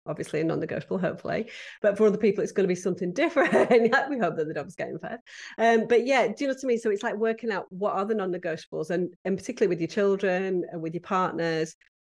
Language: English